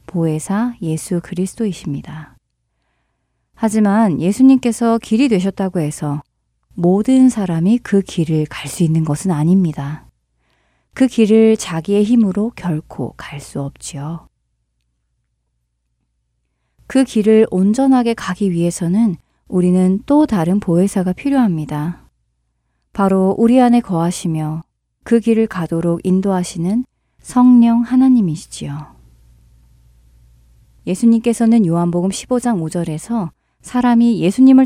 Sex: female